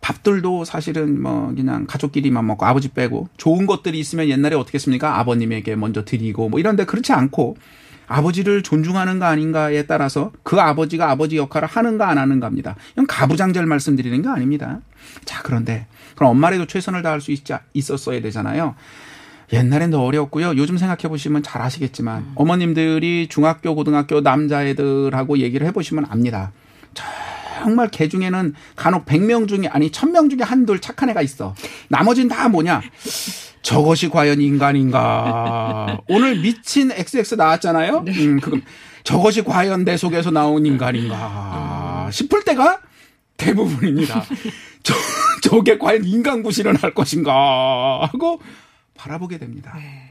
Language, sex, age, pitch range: Korean, male, 40-59, 135-185 Hz